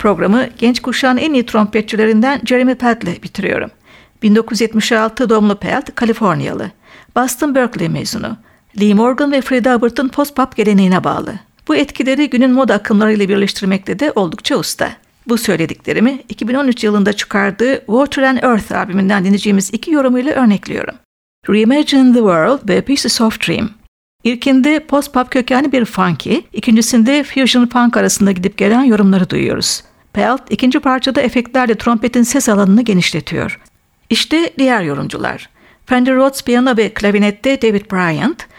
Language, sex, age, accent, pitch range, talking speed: Turkish, female, 60-79, native, 210-255 Hz, 135 wpm